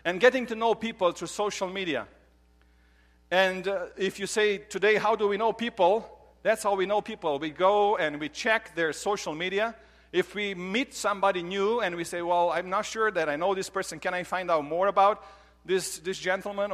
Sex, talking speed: male, 210 wpm